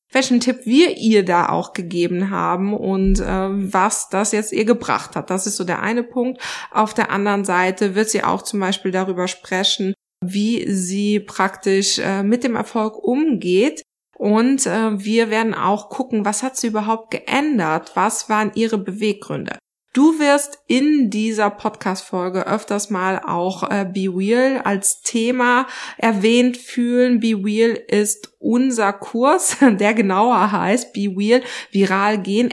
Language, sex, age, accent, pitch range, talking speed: German, female, 20-39, German, 195-240 Hz, 150 wpm